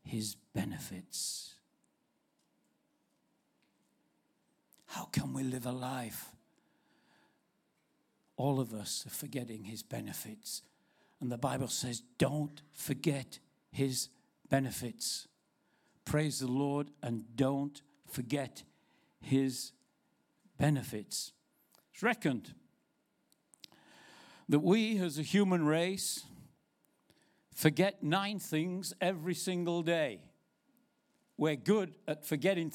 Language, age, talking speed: English, 60-79, 90 wpm